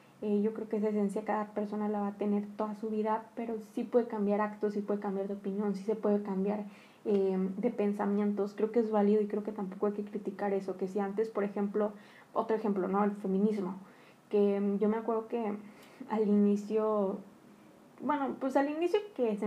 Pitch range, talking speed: 205-235 Hz, 205 wpm